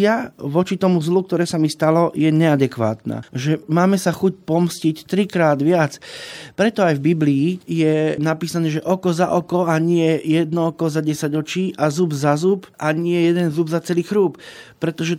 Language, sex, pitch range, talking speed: Slovak, male, 150-185 Hz, 180 wpm